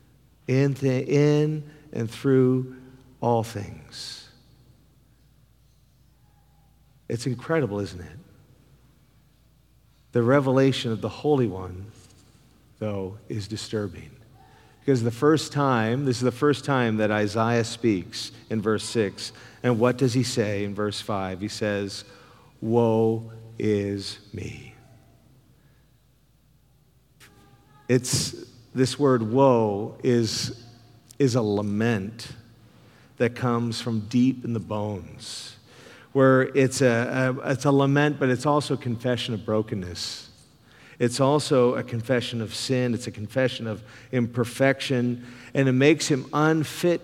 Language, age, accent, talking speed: English, 50-69, American, 115 wpm